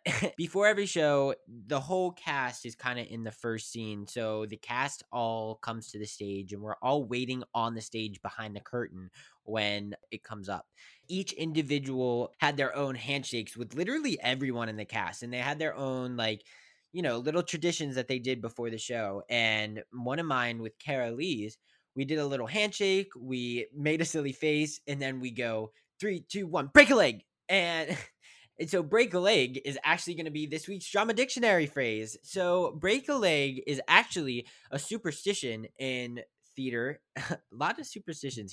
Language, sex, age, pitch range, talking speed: English, male, 20-39, 110-160 Hz, 185 wpm